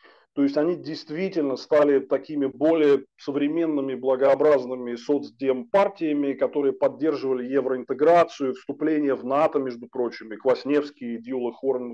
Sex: male